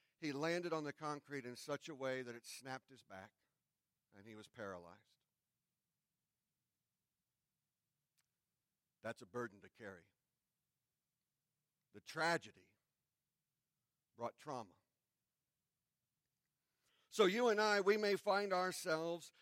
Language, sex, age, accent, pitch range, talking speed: English, male, 50-69, American, 145-195 Hz, 110 wpm